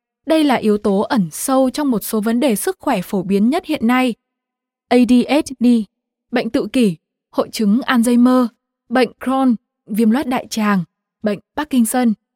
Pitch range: 210-260 Hz